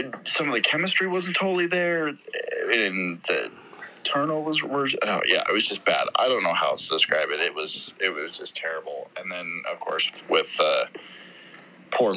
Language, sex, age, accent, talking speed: English, male, 20-39, American, 195 wpm